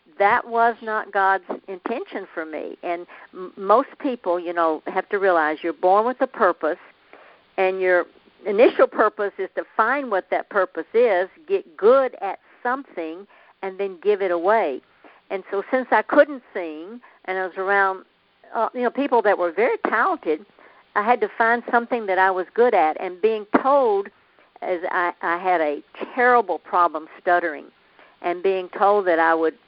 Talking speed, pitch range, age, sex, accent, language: 170 wpm, 170-220 Hz, 50-69, female, American, English